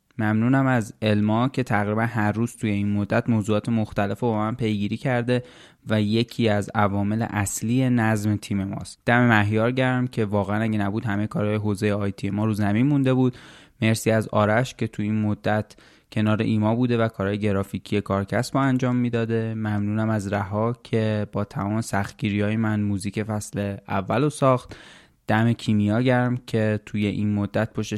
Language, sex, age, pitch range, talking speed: Persian, male, 20-39, 105-120 Hz, 165 wpm